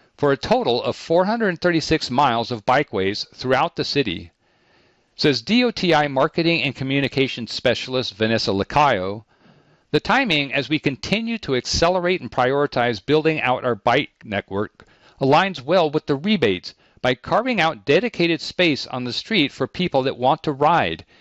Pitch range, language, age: 115-160 Hz, English, 50-69